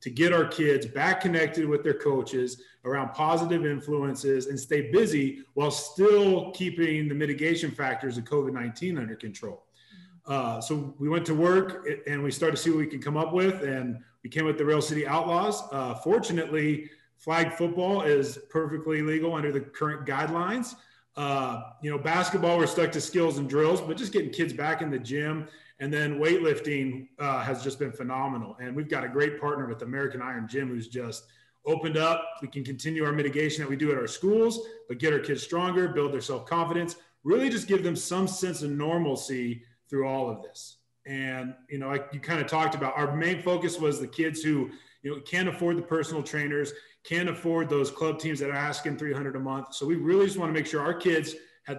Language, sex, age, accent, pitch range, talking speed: English, male, 30-49, American, 135-165 Hz, 205 wpm